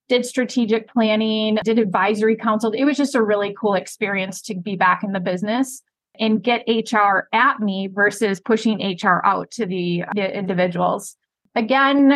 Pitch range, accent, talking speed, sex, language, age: 200-235 Hz, American, 160 wpm, female, English, 30-49